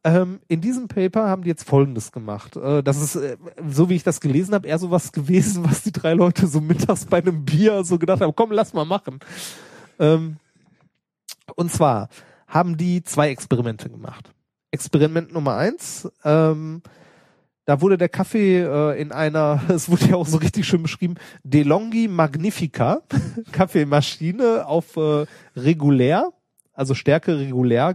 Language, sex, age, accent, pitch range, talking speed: German, male, 30-49, German, 150-185 Hz, 145 wpm